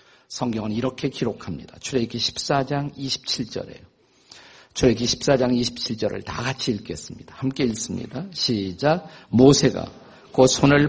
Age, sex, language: 50-69, male, Korean